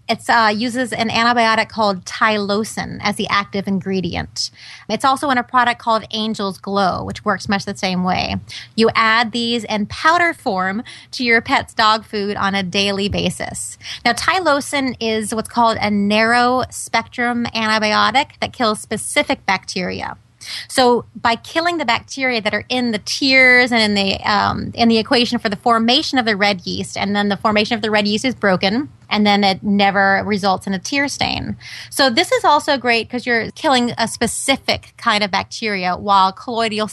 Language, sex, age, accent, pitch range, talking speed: English, female, 30-49, American, 205-240 Hz, 180 wpm